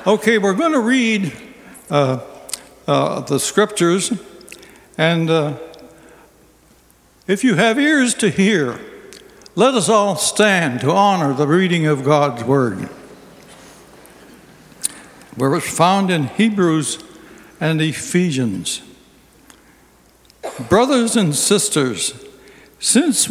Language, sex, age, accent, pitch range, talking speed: English, male, 60-79, American, 150-215 Hz, 100 wpm